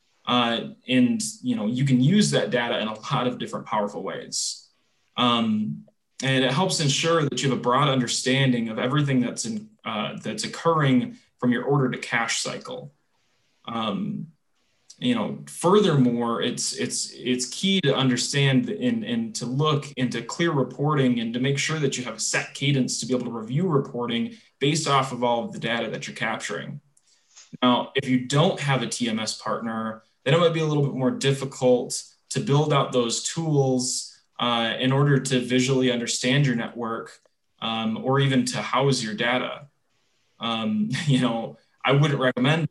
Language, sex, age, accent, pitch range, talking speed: English, male, 20-39, American, 125-145 Hz, 175 wpm